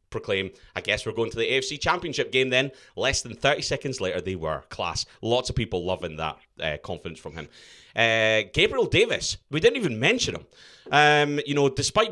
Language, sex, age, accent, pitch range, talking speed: English, male, 30-49, British, 100-150 Hz, 200 wpm